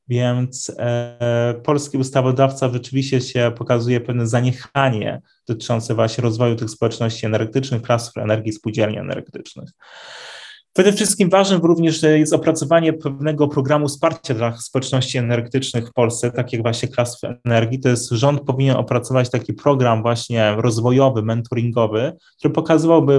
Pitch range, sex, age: 115-140 Hz, male, 20-39